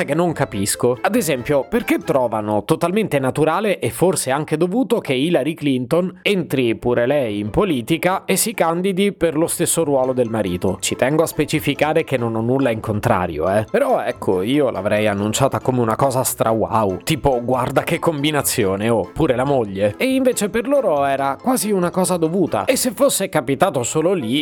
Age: 30-49